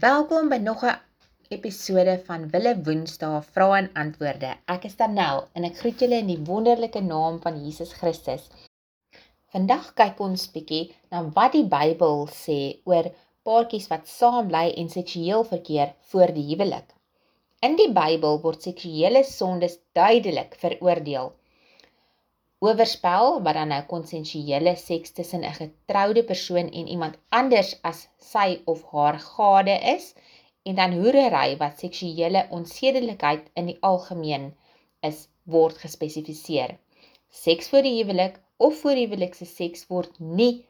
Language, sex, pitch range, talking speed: English, female, 160-220 Hz, 135 wpm